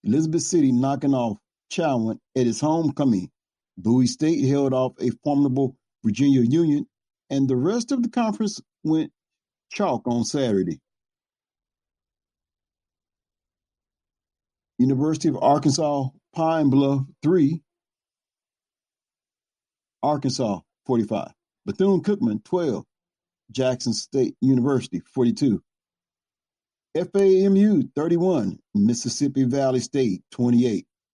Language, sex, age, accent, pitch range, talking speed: English, male, 50-69, American, 125-160 Hz, 90 wpm